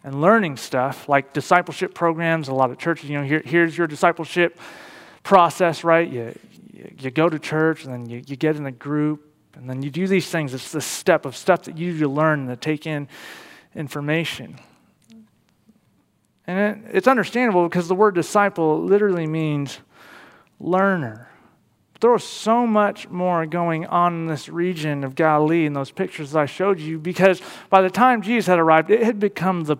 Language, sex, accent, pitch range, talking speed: English, male, American, 150-190 Hz, 185 wpm